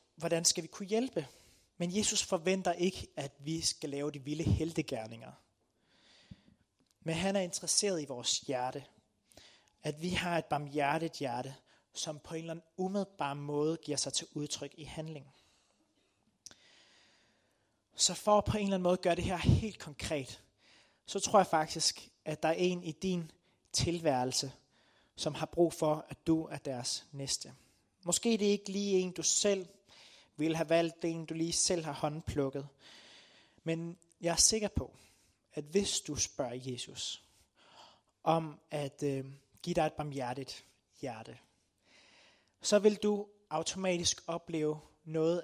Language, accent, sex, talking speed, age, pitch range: Danish, native, male, 155 wpm, 30-49, 135-175 Hz